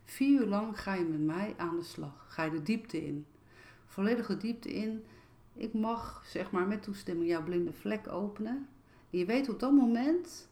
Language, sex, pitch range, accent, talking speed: Dutch, female, 155-215 Hz, Dutch, 195 wpm